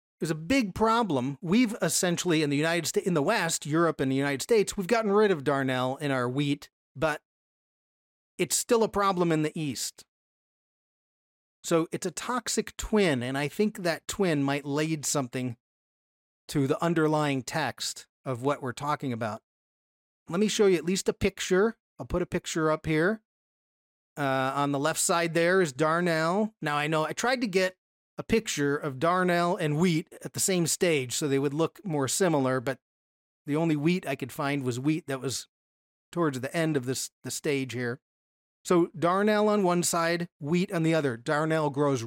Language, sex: English, male